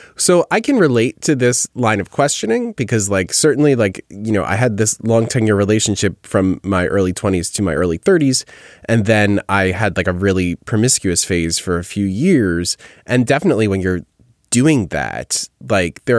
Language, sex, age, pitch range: English, male, 20-39, 95-125 Hz